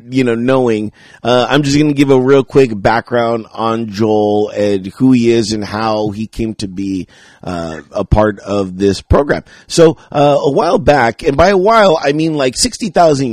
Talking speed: 200 wpm